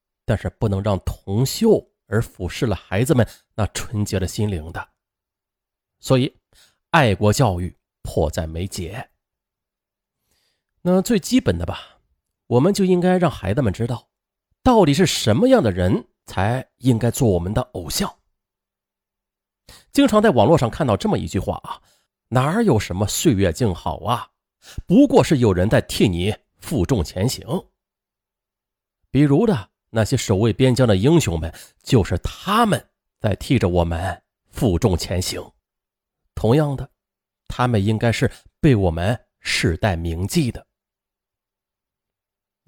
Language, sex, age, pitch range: Chinese, male, 30-49, 95-145 Hz